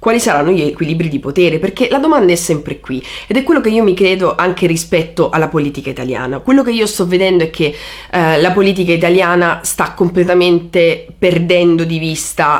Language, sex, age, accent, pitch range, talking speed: Italian, female, 30-49, native, 150-175 Hz, 190 wpm